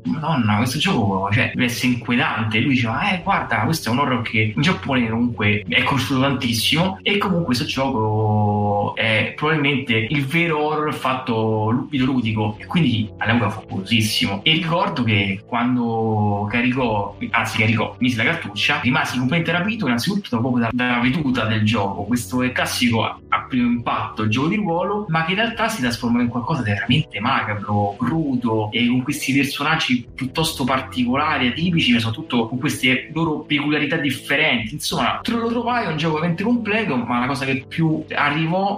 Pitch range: 115-155 Hz